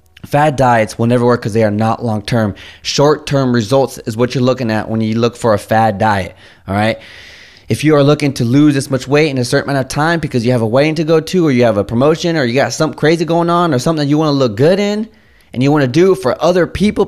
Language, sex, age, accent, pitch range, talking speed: English, male, 20-39, American, 110-150 Hz, 270 wpm